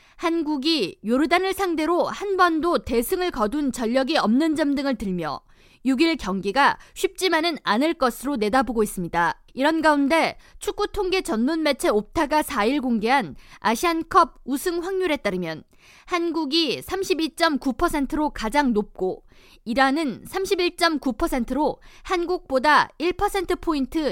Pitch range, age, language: 245-345 Hz, 20-39, Korean